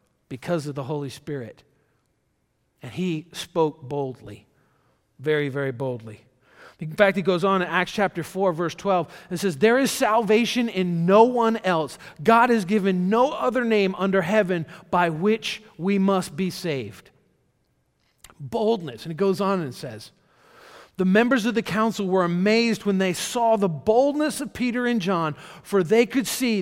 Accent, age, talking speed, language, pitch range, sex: American, 50-69, 165 wpm, English, 160-220 Hz, male